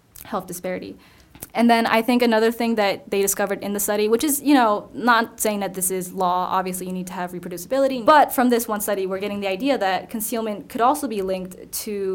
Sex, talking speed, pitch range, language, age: female, 225 wpm, 180-220 Hz, English, 10-29